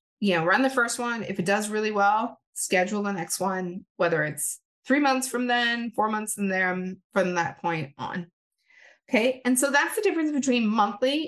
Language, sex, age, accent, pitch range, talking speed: English, female, 30-49, American, 190-250 Hz, 195 wpm